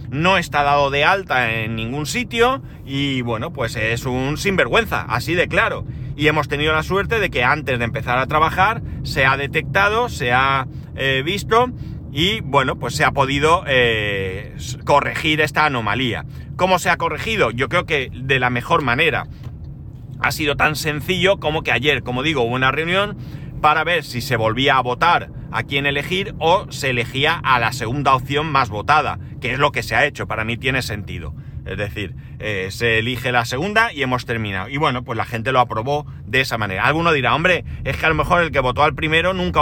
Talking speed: 200 wpm